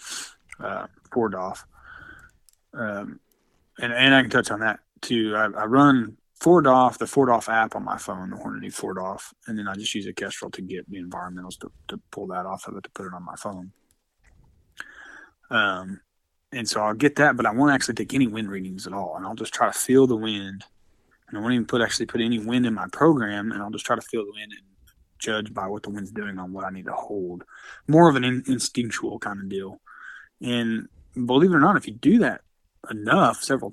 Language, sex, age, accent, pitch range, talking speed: English, male, 20-39, American, 100-125 Hz, 230 wpm